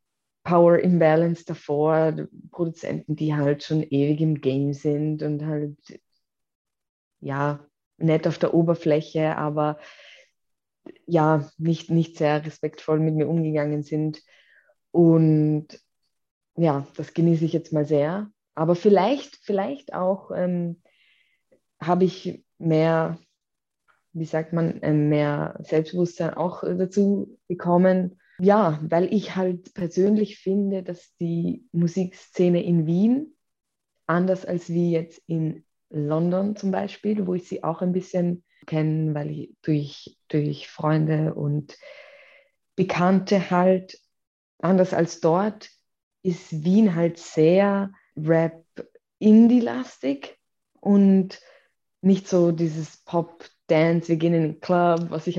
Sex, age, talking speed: female, 20-39, 115 wpm